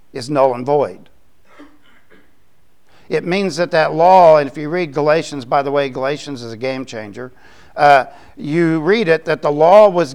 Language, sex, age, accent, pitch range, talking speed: English, male, 60-79, American, 140-175 Hz, 175 wpm